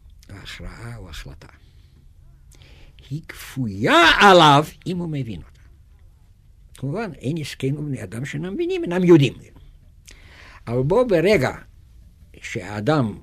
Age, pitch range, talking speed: 60-79, 85-125 Hz, 105 wpm